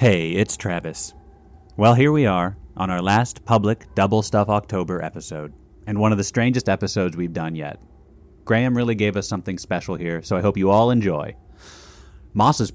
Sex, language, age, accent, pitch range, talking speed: male, English, 30-49, American, 95-125 Hz, 180 wpm